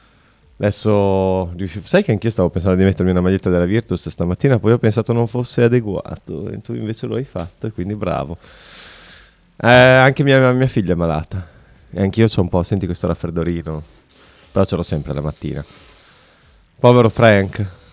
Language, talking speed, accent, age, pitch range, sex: Italian, 165 wpm, native, 30-49, 90-115 Hz, male